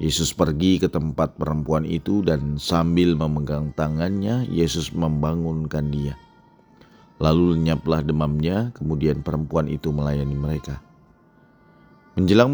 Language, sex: Indonesian, male